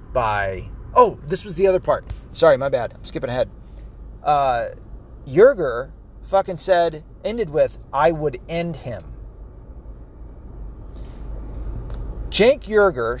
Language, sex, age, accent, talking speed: English, male, 30-49, American, 110 wpm